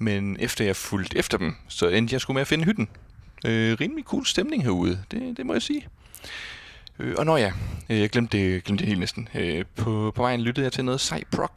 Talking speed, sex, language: 235 wpm, male, Danish